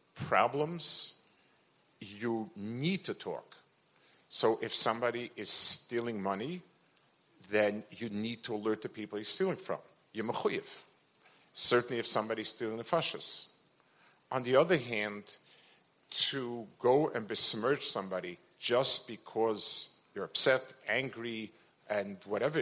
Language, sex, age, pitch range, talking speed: English, male, 50-69, 105-135 Hz, 120 wpm